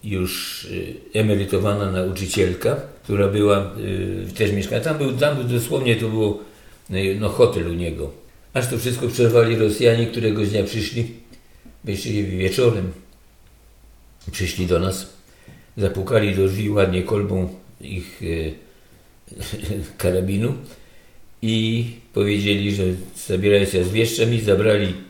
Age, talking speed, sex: 60-79, 120 wpm, male